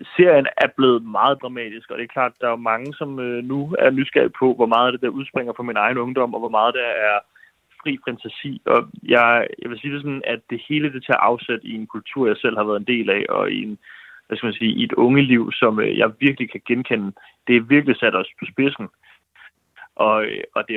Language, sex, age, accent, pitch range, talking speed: Danish, male, 30-49, native, 110-130 Hz, 235 wpm